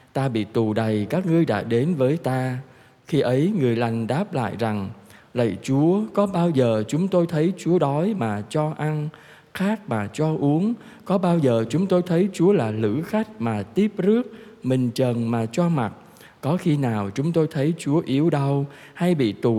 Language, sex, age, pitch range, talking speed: Vietnamese, male, 20-39, 125-165 Hz, 195 wpm